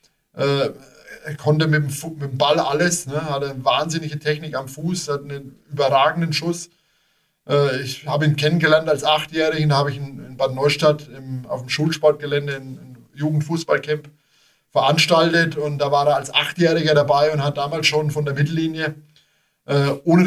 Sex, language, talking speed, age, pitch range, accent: male, German, 155 wpm, 20-39, 145-160 Hz, German